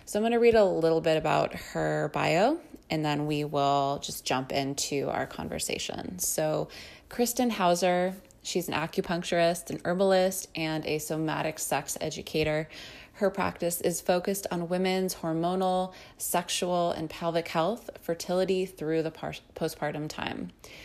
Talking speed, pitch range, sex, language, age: 140 wpm, 155-180 Hz, female, English, 20-39